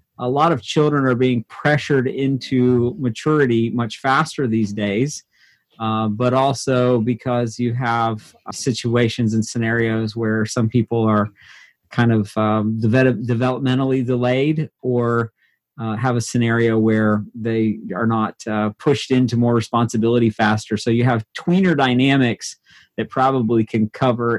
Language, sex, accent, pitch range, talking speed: English, male, American, 115-140 Hz, 140 wpm